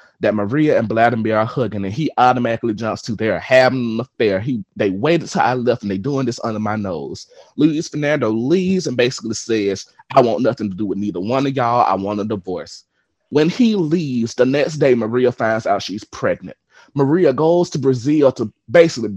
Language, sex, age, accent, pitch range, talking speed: English, male, 30-49, American, 110-150 Hz, 205 wpm